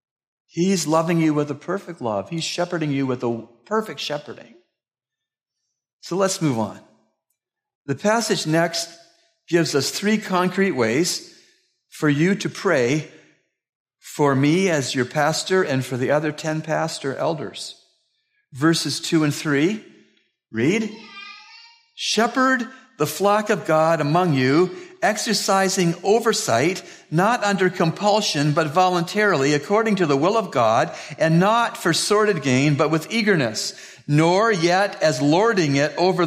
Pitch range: 145-200 Hz